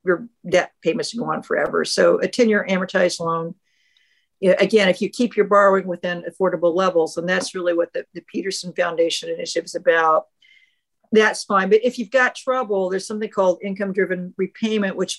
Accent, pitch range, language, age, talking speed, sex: American, 175-220 Hz, English, 50-69, 180 wpm, female